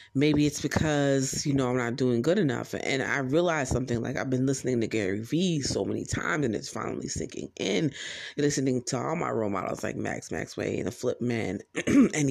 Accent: American